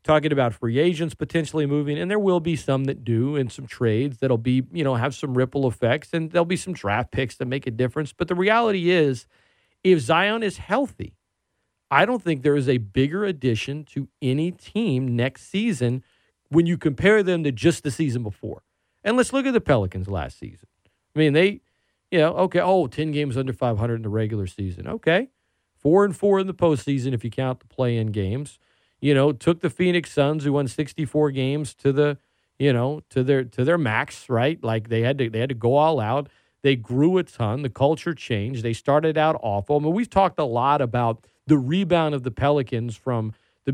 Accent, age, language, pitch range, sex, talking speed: American, 40-59, English, 125-165 Hz, male, 215 wpm